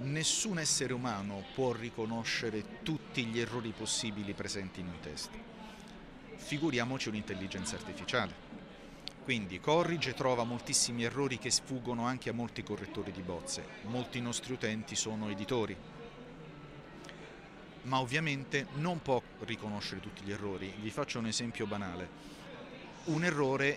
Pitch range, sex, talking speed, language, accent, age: 110-145 Hz, male, 125 wpm, Italian, native, 50-69